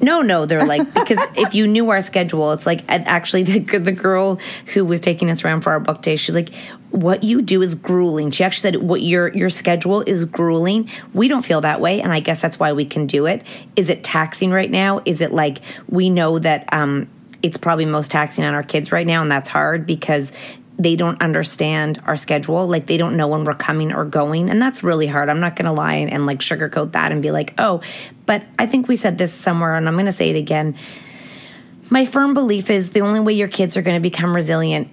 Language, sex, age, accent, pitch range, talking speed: English, female, 30-49, American, 155-190 Hz, 240 wpm